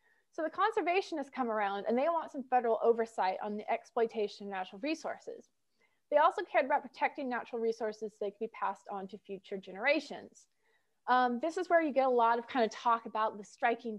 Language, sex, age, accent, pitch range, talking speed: English, female, 20-39, American, 220-295 Hz, 205 wpm